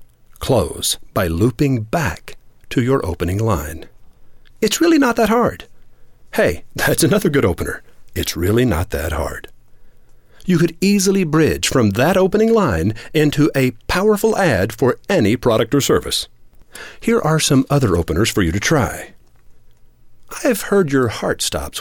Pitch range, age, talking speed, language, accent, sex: 105-160 Hz, 50-69, 150 wpm, English, American, male